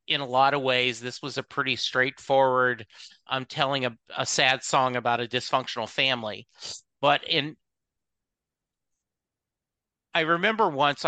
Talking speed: 135 wpm